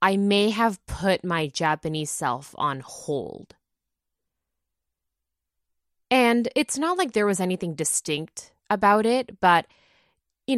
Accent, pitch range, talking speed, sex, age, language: American, 150-210 Hz, 120 wpm, female, 20-39, English